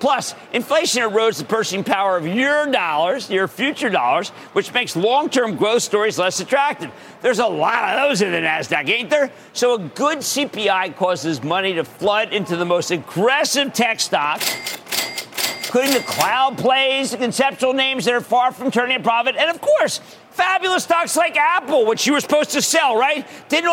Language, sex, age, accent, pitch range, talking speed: English, male, 50-69, American, 185-275 Hz, 180 wpm